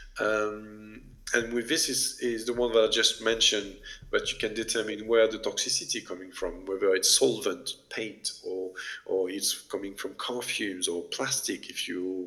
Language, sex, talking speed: Italian, male, 175 wpm